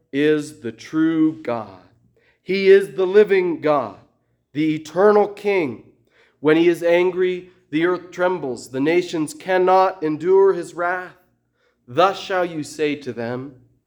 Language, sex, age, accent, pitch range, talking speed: English, male, 30-49, American, 155-205 Hz, 135 wpm